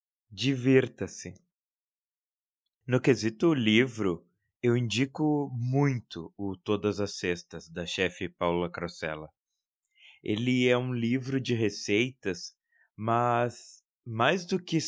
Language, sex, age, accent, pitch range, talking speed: Portuguese, male, 20-39, Brazilian, 100-135 Hz, 100 wpm